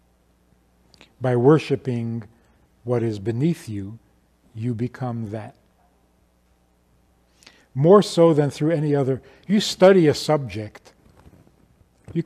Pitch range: 100-150 Hz